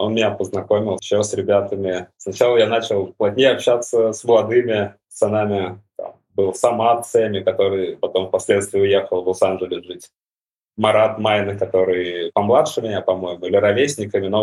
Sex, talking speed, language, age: male, 145 wpm, Russian, 20-39